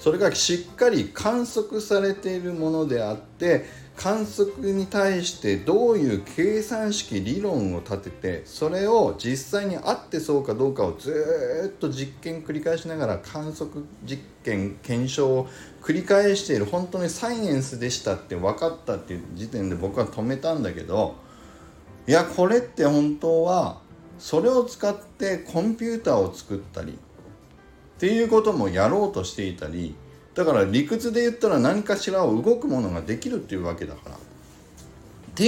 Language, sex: Japanese, male